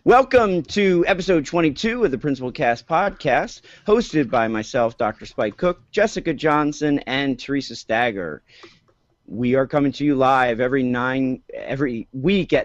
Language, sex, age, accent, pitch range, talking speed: English, male, 40-59, American, 120-150 Hz, 140 wpm